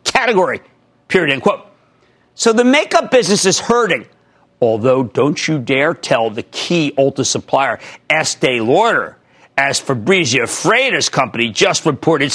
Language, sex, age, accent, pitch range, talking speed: English, male, 50-69, American, 135-205 Hz, 130 wpm